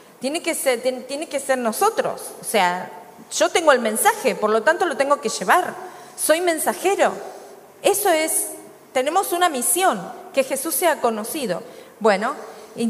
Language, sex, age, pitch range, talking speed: Spanish, female, 40-59, 210-275 Hz, 145 wpm